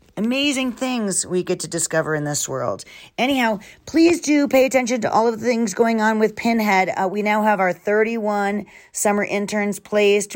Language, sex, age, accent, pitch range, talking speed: English, female, 40-59, American, 165-210 Hz, 185 wpm